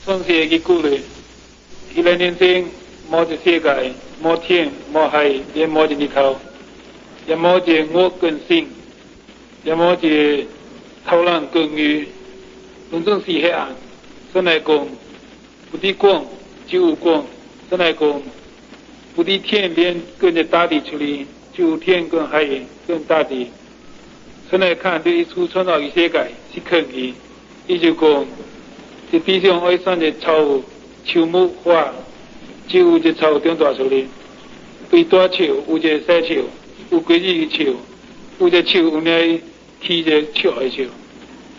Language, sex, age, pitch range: Chinese, male, 60-79, 155-190 Hz